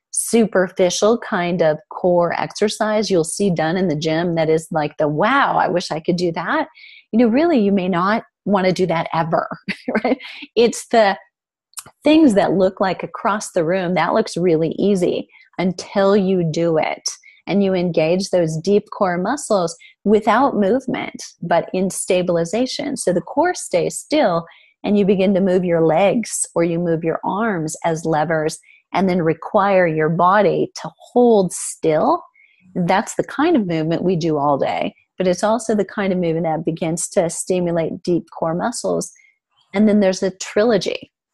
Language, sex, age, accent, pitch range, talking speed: English, female, 30-49, American, 170-225 Hz, 170 wpm